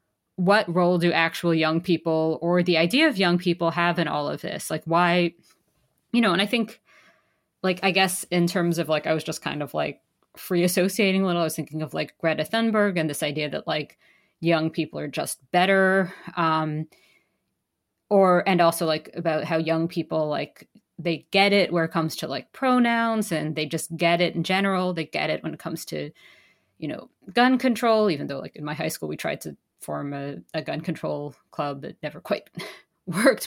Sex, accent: female, American